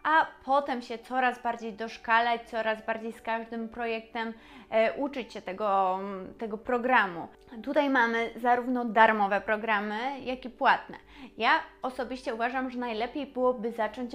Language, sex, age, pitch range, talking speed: Polish, female, 20-39, 225-265 Hz, 135 wpm